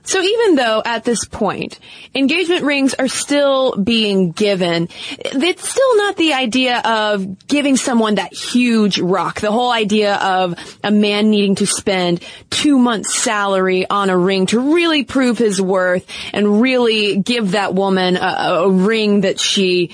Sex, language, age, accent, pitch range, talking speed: female, English, 20-39, American, 190-260 Hz, 160 wpm